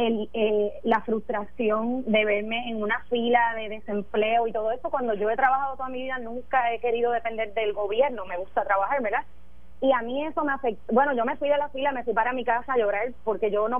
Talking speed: 235 wpm